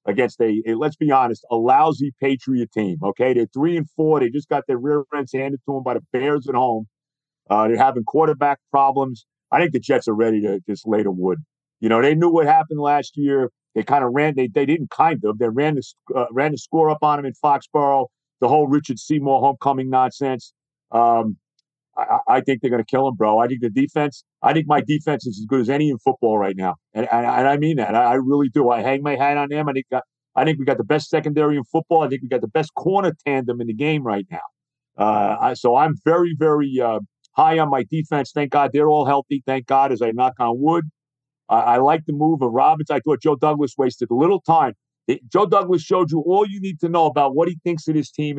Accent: American